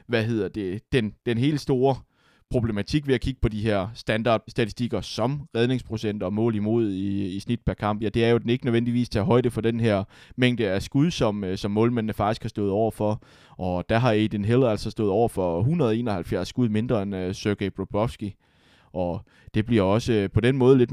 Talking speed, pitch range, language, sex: 205 wpm, 105-125 Hz, Danish, male